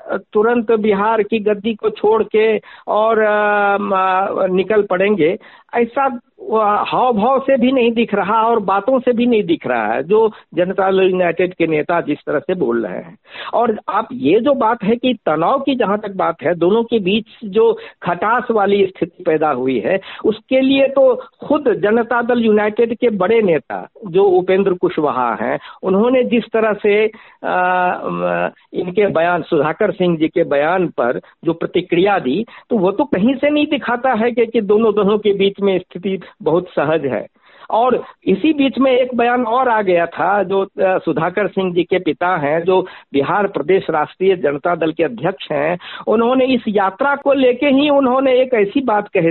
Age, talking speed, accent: 60-79, 180 wpm, native